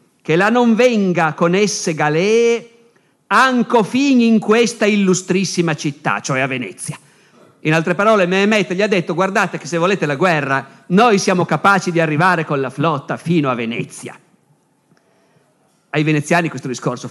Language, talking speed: Italian, 155 wpm